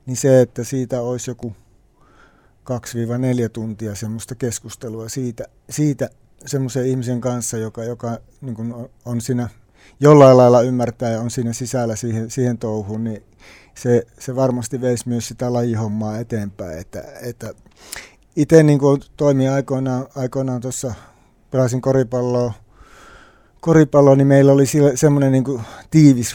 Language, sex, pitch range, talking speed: Finnish, male, 115-130 Hz, 115 wpm